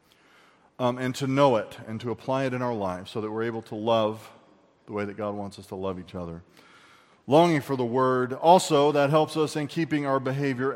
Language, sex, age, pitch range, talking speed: English, male, 40-59, 110-165 Hz, 225 wpm